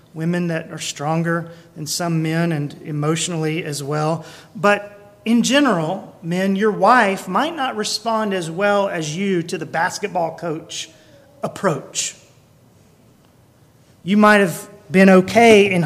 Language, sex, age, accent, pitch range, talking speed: English, male, 40-59, American, 165-225 Hz, 130 wpm